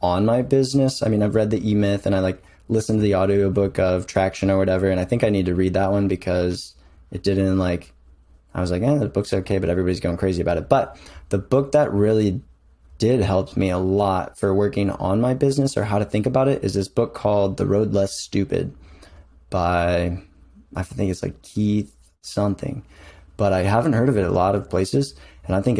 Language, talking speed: English, 220 wpm